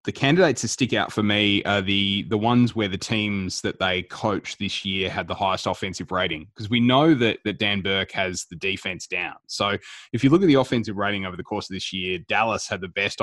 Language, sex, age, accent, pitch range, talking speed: English, male, 20-39, Australian, 95-110 Hz, 240 wpm